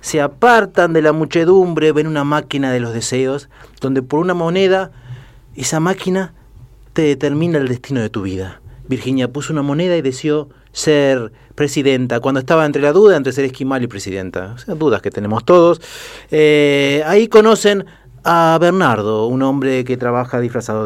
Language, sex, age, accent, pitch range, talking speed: Spanish, male, 30-49, Argentinian, 125-180 Hz, 165 wpm